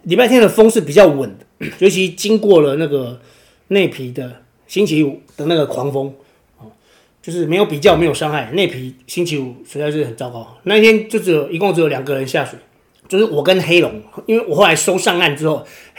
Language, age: Chinese, 30-49